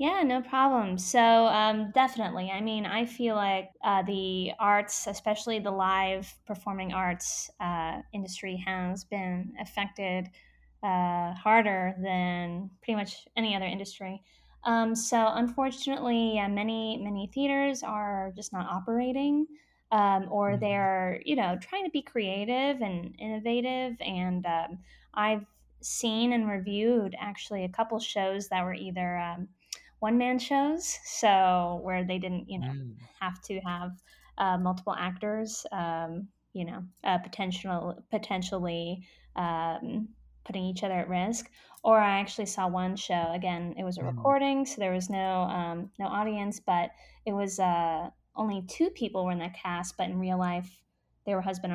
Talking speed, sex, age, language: 155 wpm, female, 10-29, English